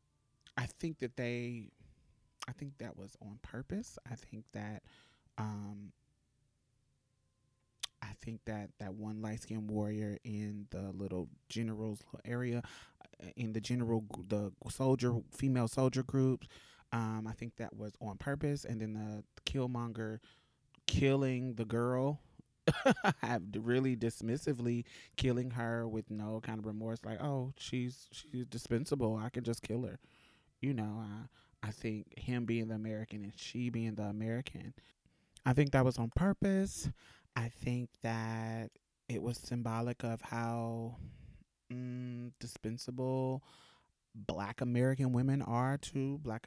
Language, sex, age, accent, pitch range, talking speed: English, male, 20-39, American, 110-125 Hz, 135 wpm